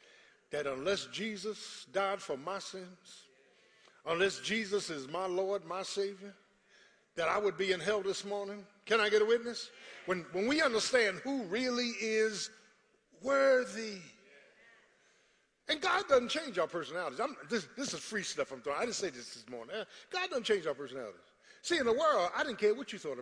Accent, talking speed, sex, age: American, 180 wpm, male, 50-69